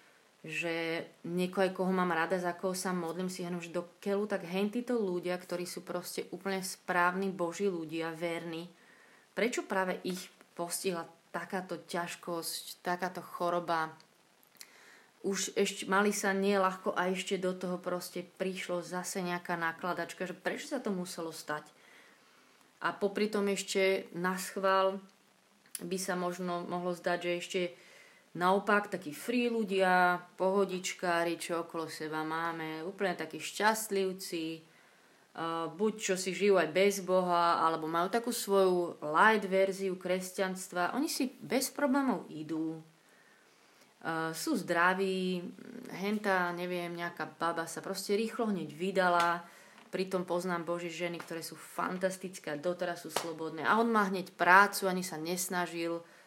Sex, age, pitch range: female, 30-49, 170-195 Hz